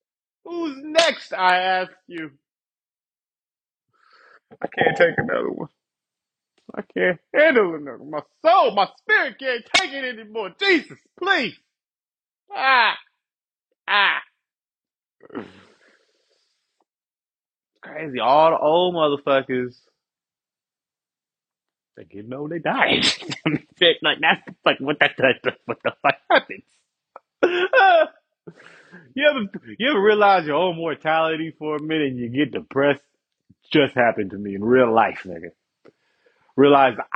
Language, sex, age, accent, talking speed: English, male, 30-49, American, 115 wpm